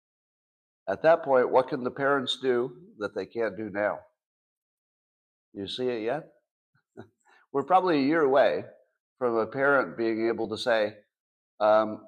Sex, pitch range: male, 110-150 Hz